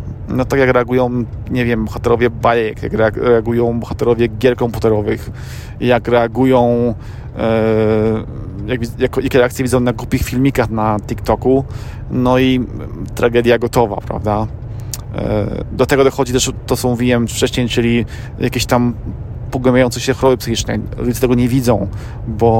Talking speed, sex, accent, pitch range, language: 140 wpm, male, native, 110-125 Hz, Polish